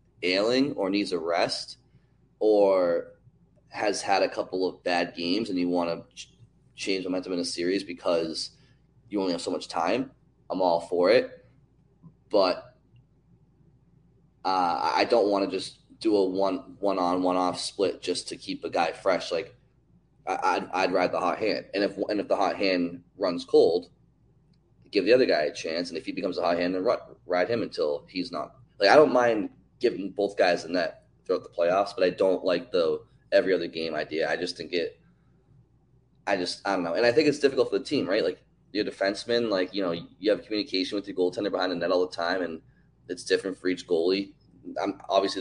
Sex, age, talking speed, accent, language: male, 20-39, 205 wpm, American, English